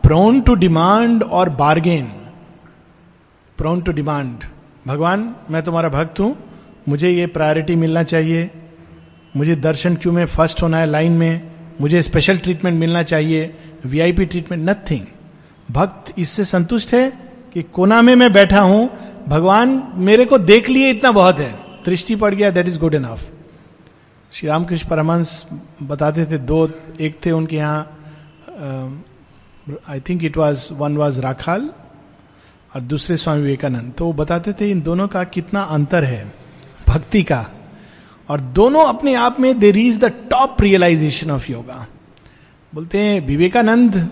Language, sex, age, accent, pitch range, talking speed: Hindi, male, 50-69, native, 155-195 Hz, 125 wpm